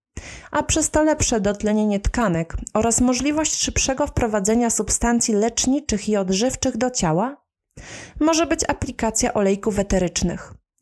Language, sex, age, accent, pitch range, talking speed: Polish, female, 30-49, native, 200-260 Hz, 115 wpm